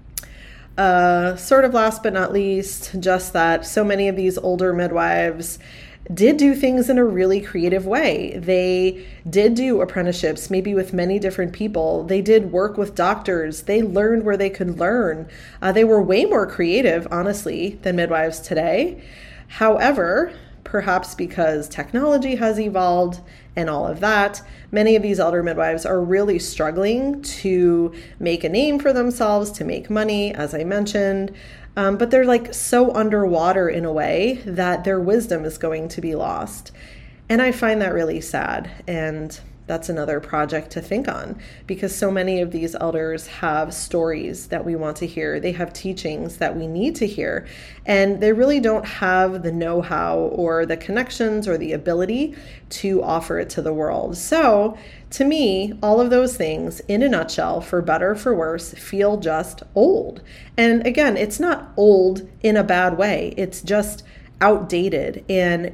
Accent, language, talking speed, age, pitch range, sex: American, English, 165 wpm, 20-39, 170-215 Hz, female